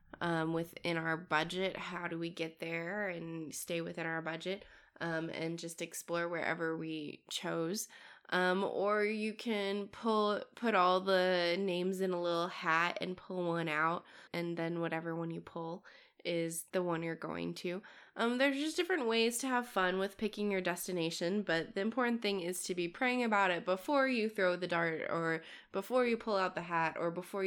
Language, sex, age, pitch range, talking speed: English, female, 20-39, 170-205 Hz, 190 wpm